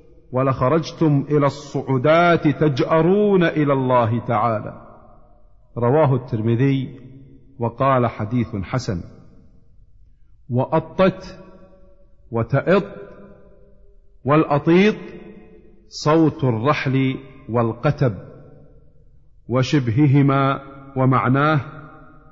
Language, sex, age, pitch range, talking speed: Arabic, male, 50-69, 120-155 Hz, 55 wpm